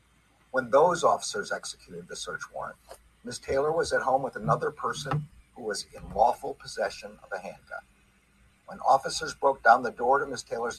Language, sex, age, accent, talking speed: English, male, 50-69, American, 180 wpm